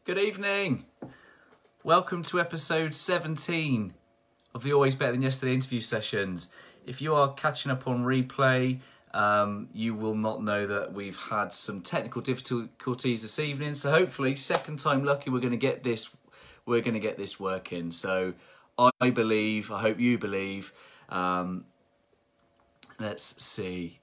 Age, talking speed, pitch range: 30-49, 150 wpm, 90-130 Hz